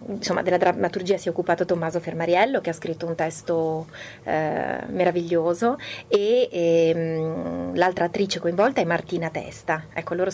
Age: 30-49